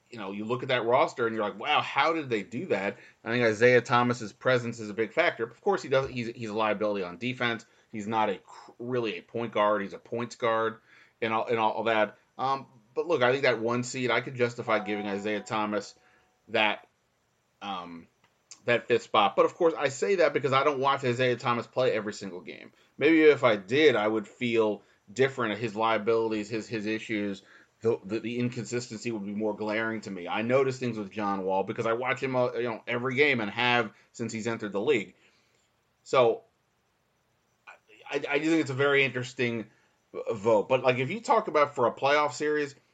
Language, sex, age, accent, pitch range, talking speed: English, male, 30-49, American, 110-135 Hz, 215 wpm